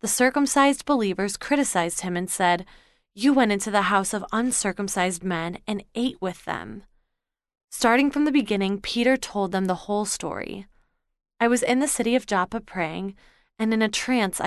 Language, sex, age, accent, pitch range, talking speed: English, female, 20-39, American, 185-240 Hz, 170 wpm